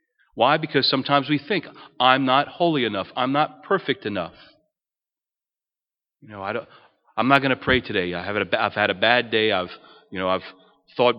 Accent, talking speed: American, 195 wpm